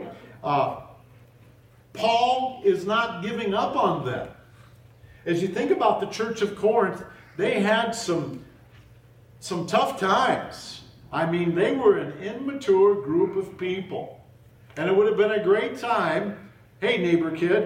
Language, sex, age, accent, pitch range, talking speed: English, male, 50-69, American, 120-200 Hz, 145 wpm